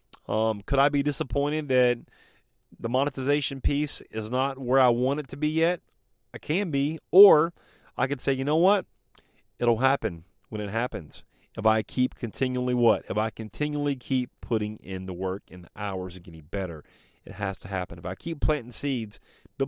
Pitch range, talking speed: 110-150 Hz, 190 wpm